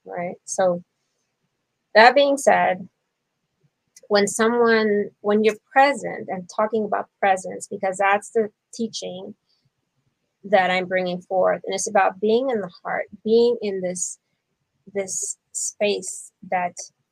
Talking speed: 125 wpm